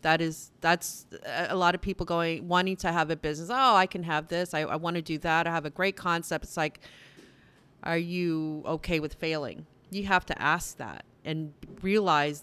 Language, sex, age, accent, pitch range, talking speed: English, female, 30-49, American, 155-185 Hz, 205 wpm